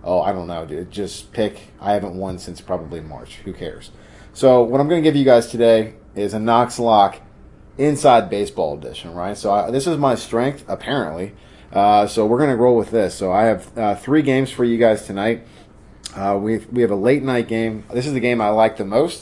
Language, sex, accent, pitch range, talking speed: English, male, American, 100-120 Hz, 220 wpm